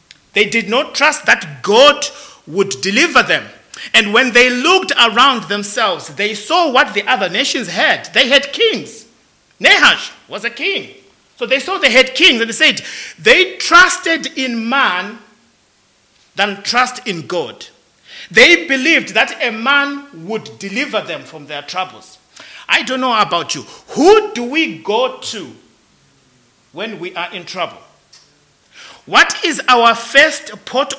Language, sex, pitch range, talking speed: English, male, 205-295 Hz, 150 wpm